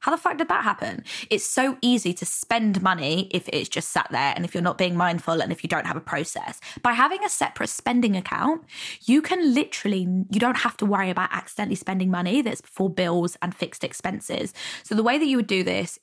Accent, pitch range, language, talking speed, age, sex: British, 180-230 Hz, English, 230 wpm, 20-39, female